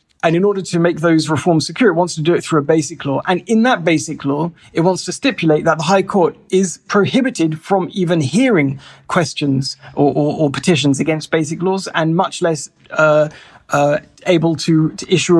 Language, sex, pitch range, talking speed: English, male, 150-180 Hz, 205 wpm